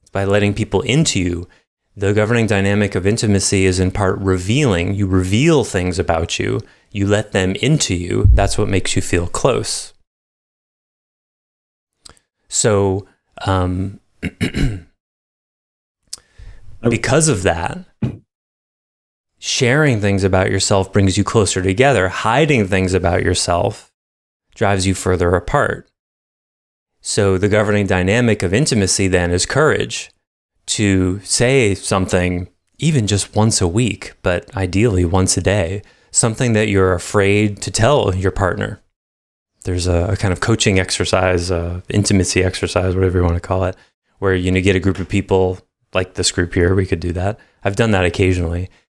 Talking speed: 140 wpm